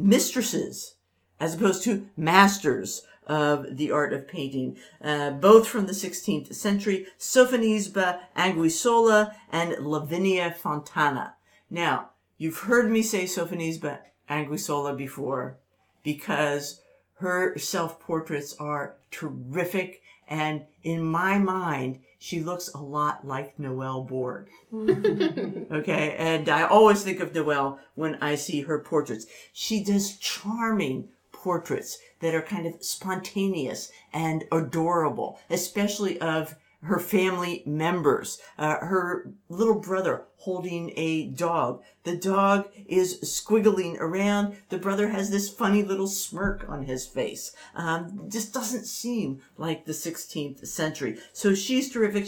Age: 50-69